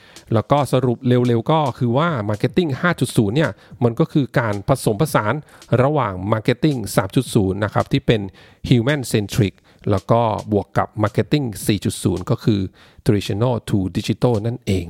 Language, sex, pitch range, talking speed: English, male, 105-135 Hz, 55 wpm